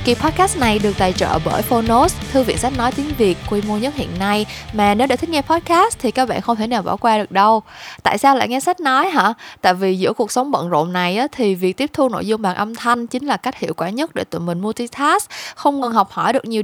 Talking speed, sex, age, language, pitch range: 270 wpm, female, 20-39, Vietnamese, 200-260 Hz